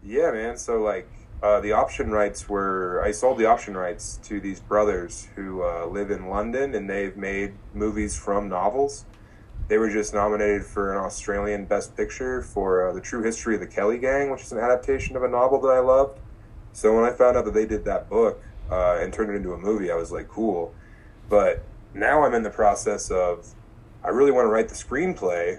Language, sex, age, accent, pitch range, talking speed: English, male, 20-39, American, 100-115 Hz, 215 wpm